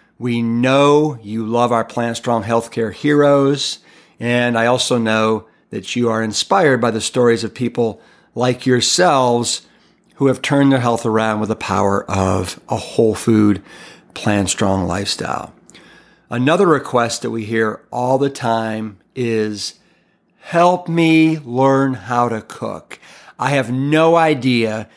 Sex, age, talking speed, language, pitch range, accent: male, 50-69, 140 wpm, English, 115-135 Hz, American